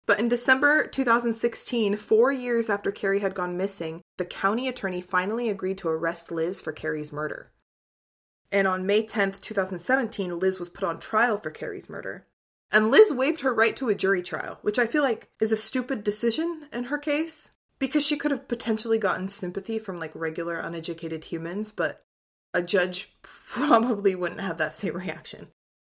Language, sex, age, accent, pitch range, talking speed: English, female, 20-39, American, 170-220 Hz, 175 wpm